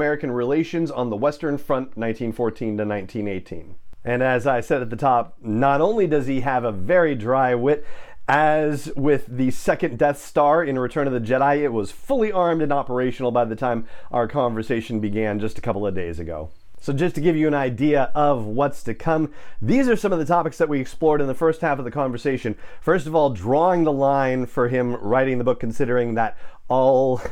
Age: 40-59